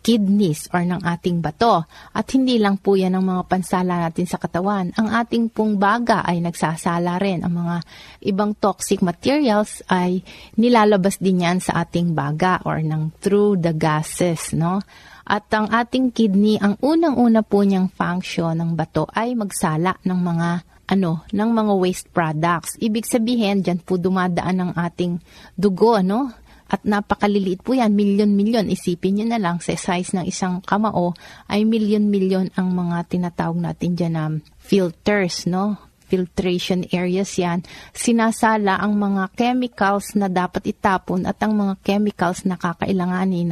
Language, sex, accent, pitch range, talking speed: Filipino, female, native, 175-210 Hz, 155 wpm